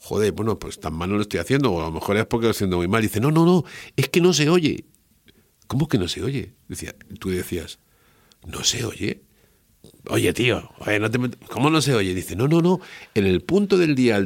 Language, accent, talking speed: Spanish, Spanish, 230 wpm